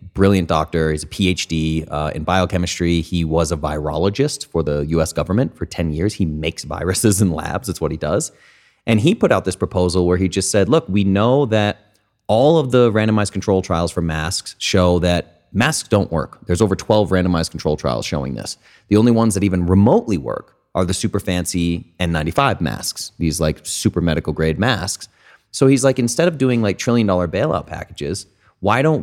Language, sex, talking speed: English, male, 195 wpm